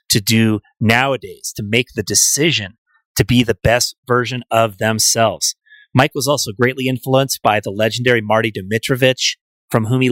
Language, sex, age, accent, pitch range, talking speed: English, male, 30-49, American, 115-145 Hz, 160 wpm